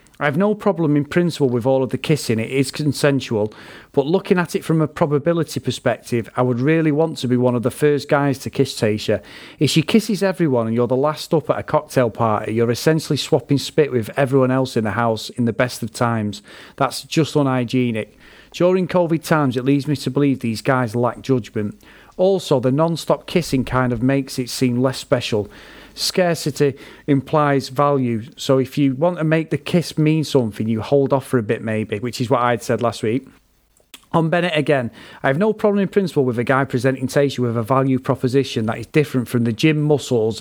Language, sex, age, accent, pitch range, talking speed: English, male, 40-59, British, 120-155 Hz, 210 wpm